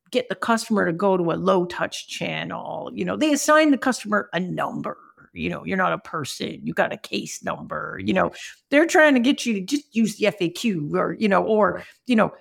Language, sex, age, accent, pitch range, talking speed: English, female, 50-69, American, 210-265 Hz, 225 wpm